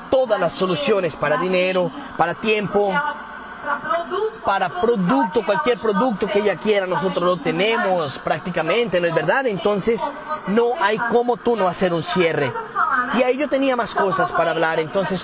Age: 30-49